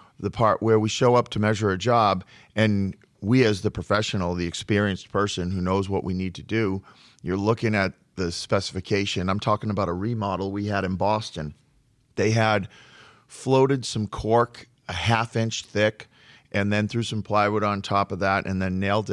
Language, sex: English, male